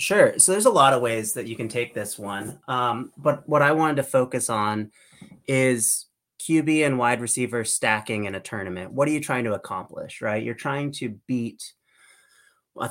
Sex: male